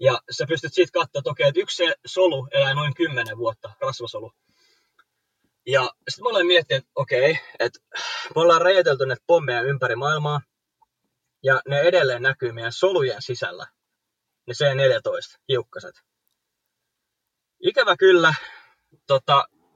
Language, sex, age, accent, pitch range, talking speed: Finnish, male, 20-39, native, 125-175 Hz, 125 wpm